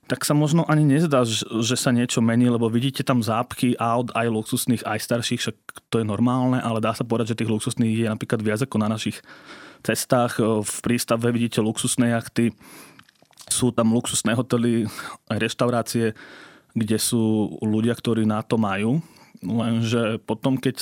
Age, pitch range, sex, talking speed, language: 20-39, 110-120 Hz, male, 165 wpm, Slovak